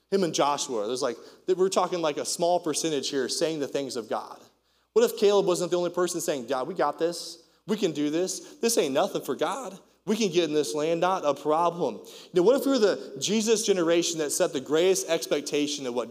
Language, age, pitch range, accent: English, 30-49, 130-185 Hz, American